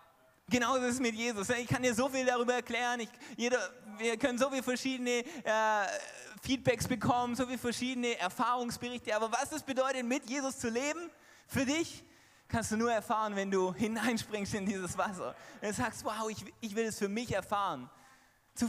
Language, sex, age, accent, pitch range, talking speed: German, male, 20-39, German, 210-245 Hz, 185 wpm